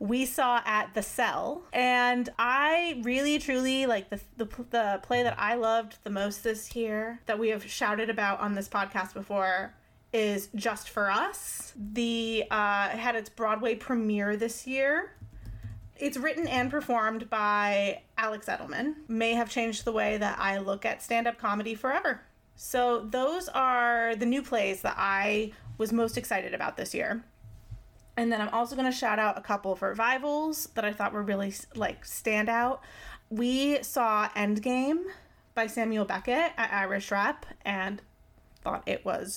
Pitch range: 210-255 Hz